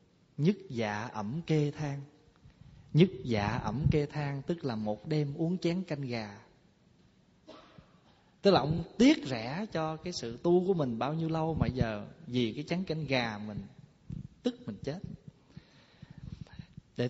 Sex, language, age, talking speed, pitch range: male, Vietnamese, 20-39, 155 wpm, 120-160 Hz